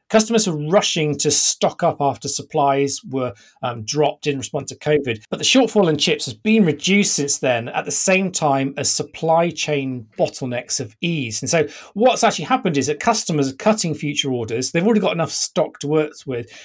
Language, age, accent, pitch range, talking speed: English, 40-59, British, 140-205 Hz, 200 wpm